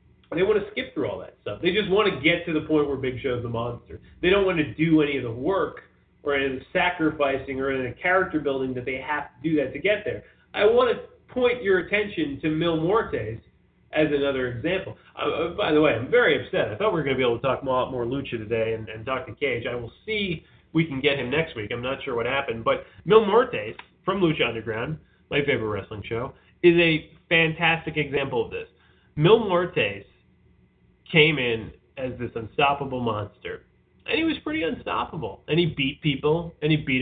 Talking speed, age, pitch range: 225 wpm, 30-49, 120-165 Hz